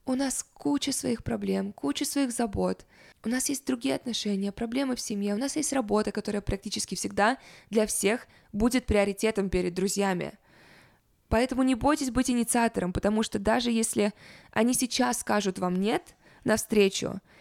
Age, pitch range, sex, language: 20-39, 200-245 Hz, female, Russian